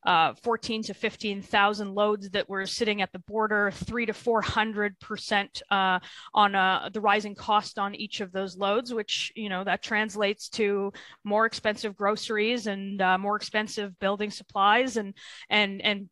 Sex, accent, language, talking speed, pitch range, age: female, American, English, 170 wpm, 195-220 Hz, 20-39